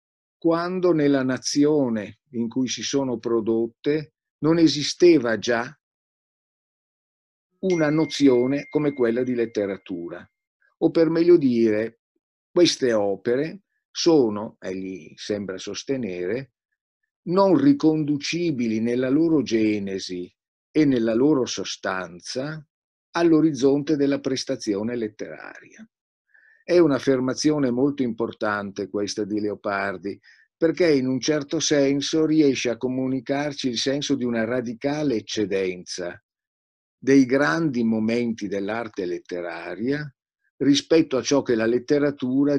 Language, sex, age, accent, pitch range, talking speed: Italian, male, 50-69, native, 115-150 Hz, 100 wpm